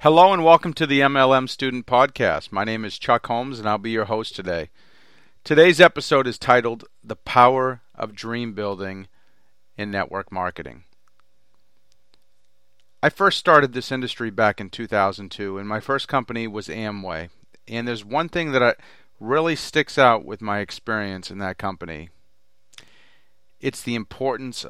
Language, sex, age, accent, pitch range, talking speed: English, male, 40-59, American, 100-130 Hz, 150 wpm